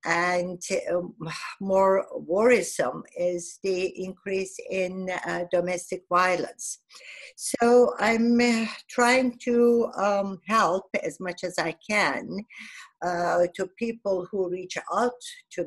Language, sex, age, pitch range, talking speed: English, female, 50-69, 170-210 Hz, 115 wpm